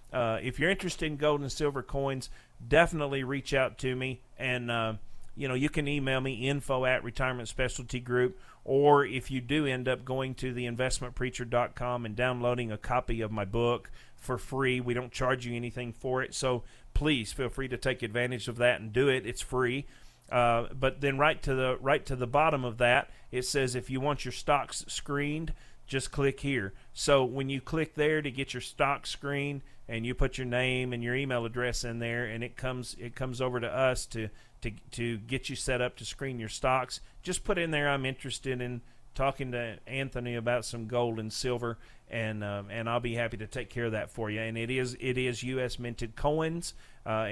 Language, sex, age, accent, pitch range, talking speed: English, male, 40-59, American, 120-140 Hz, 210 wpm